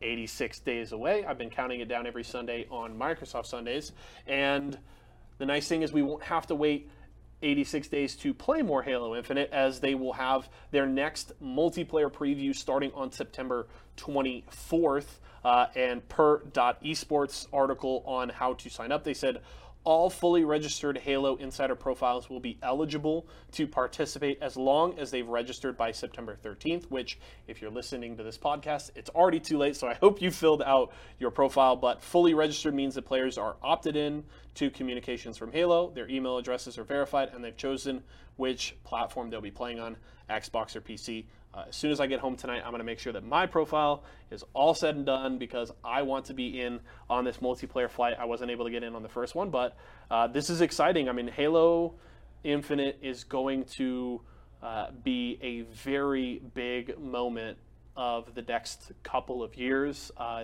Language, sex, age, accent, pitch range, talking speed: English, male, 30-49, American, 120-145 Hz, 190 wpm